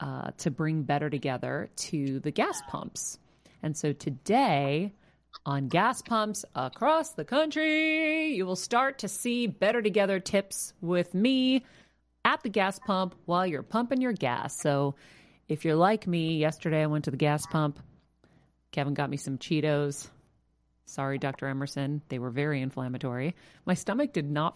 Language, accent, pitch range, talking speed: English, American, 150-195 Hz, 160 wpm